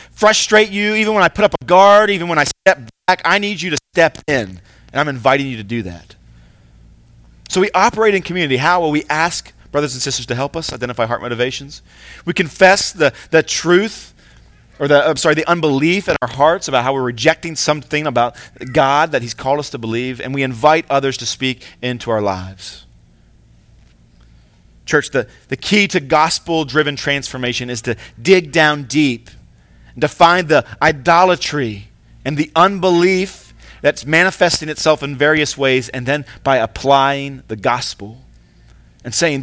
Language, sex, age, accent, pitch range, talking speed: English, male, 30-49, American, 100-155 Hz, 175 wpm